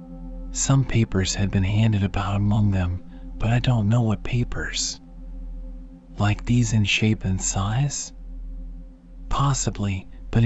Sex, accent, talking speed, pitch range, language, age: male, American, 125 wpm, 100-130 Hz, English, 40-59